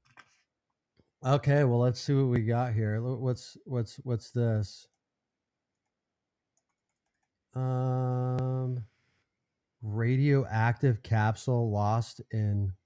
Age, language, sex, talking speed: 30-49, English, male, 80 wpm